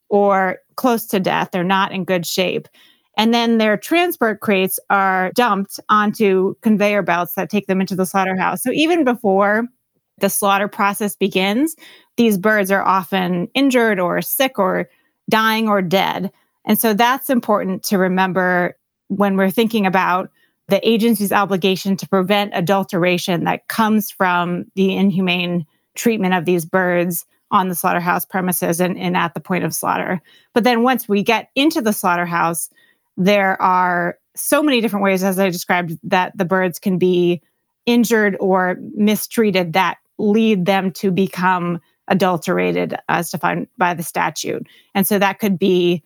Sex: female